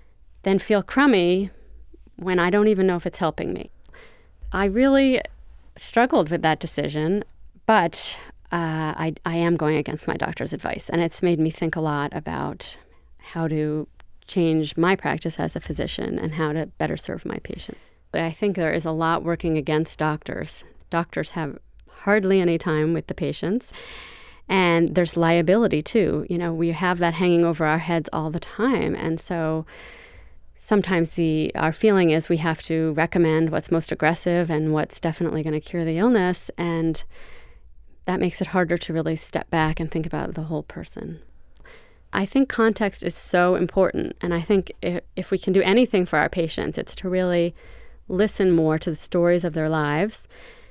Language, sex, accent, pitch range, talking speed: English, female, American, 160-185 Hz, 180 wpm